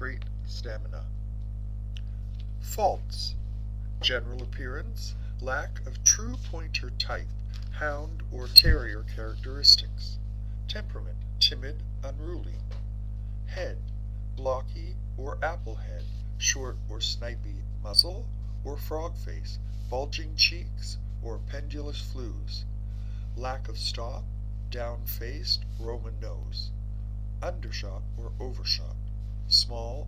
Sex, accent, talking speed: male, American, 90 wpm